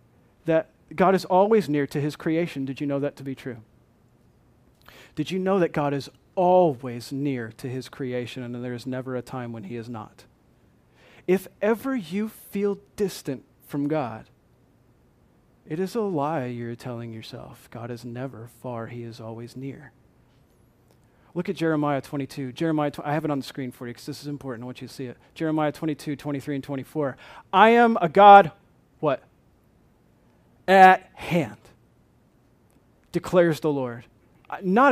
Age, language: 40-59, English